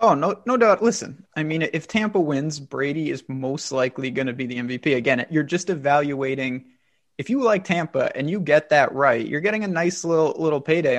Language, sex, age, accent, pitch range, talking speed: English, male, 20-39, American, 135-160 Hz, 215 wpm